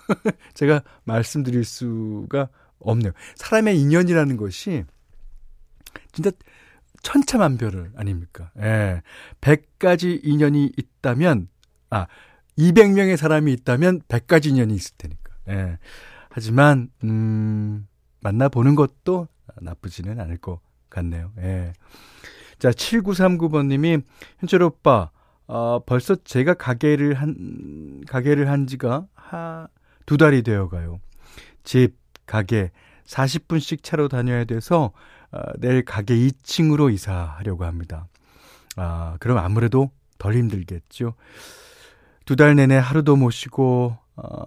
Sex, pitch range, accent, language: male, 95-145 Hz, native, Korean